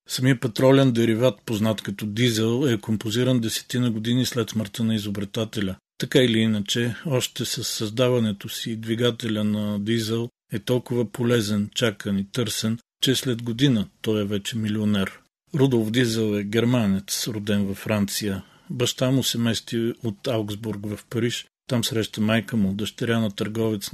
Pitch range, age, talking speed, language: 105-120 Hz, 40-59, 150 wpm, Bulgarian